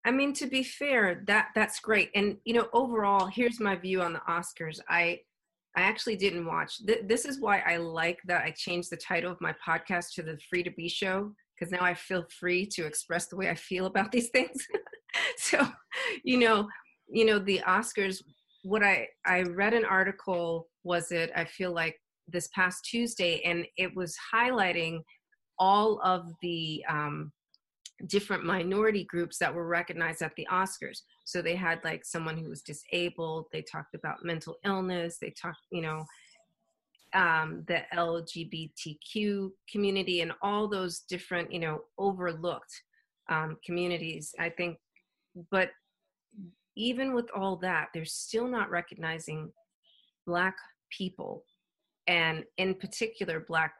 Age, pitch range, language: 30-49, 170-210 Hz, English